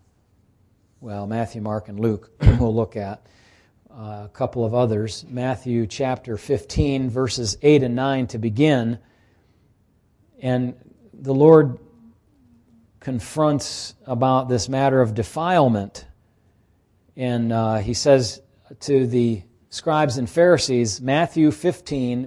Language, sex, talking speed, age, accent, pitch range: English, male, 115 wpm, 40-59, American, 105-140 Hz